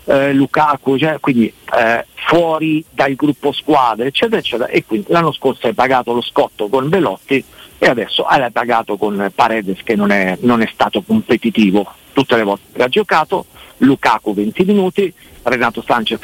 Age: 50-69